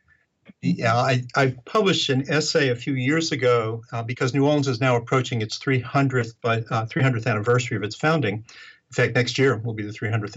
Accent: American